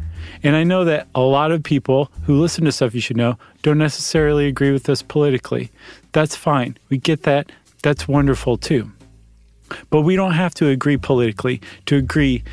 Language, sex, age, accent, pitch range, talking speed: English, male, 40-59, American, 125-155 Hz, 180 wpm